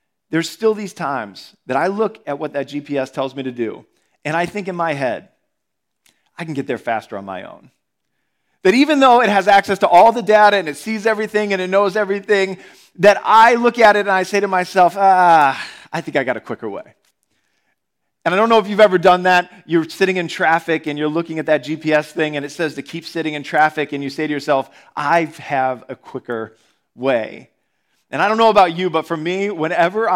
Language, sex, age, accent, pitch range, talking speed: English, male, 40-59, American, 150-195 Hz, 225 wpm